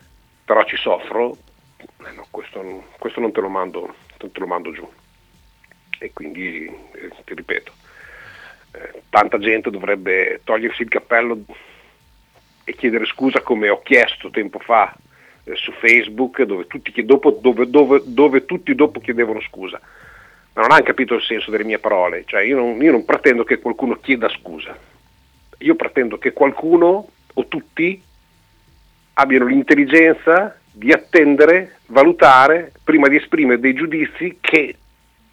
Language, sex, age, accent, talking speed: Italian, male, 50-69, native, 140 wpm